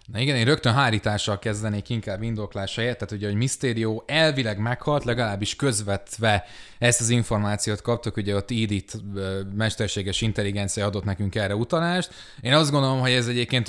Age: 20-39